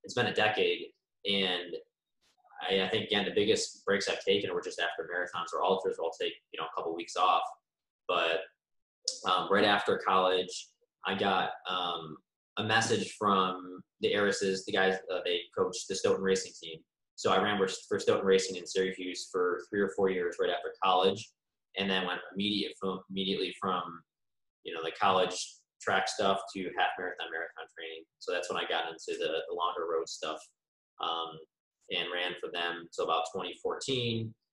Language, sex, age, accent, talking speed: English, male, 20-39, American, 175 wpm